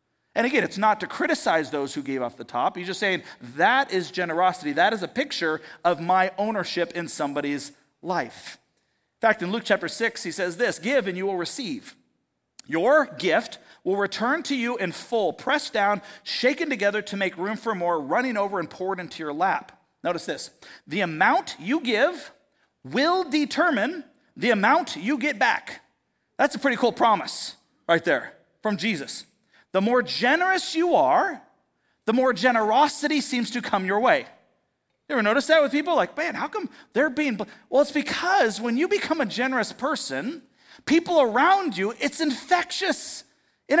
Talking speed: 175 wpm